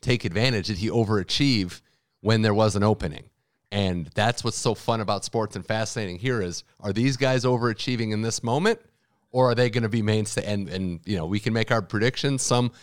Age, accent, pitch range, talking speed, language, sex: 30-49, American, 90-115 Hz, 210 wpm, English, male